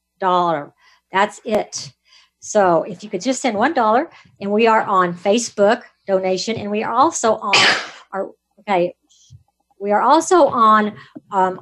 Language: English